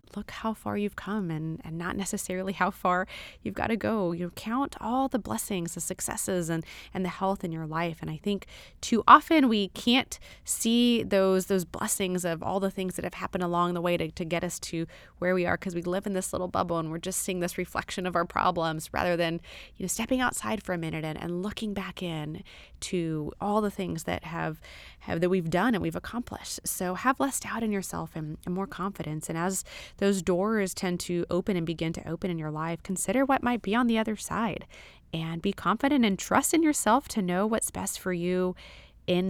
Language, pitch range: English, 170-215 Hz